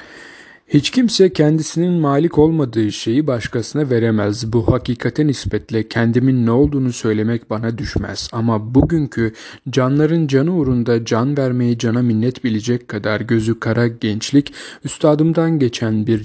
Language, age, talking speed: Turkish, 40-59, 125 wpm